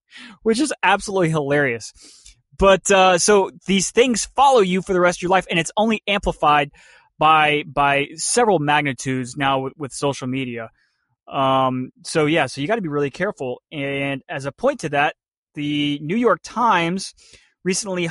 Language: English